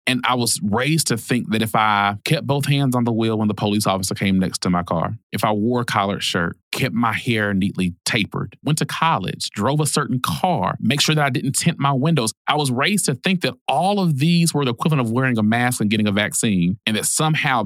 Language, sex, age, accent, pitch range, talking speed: English, male, 30-49, American, 100-140 Hz, 250 wpm